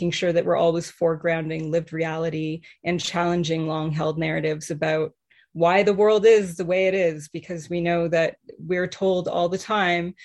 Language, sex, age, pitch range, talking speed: English, female, 30-49, 170-205 Hz, 170 wpm